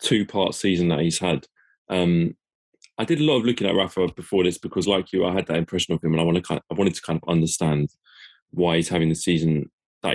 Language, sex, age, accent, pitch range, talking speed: English, male, 20-39, British, 85-95 Hz, 260 wpm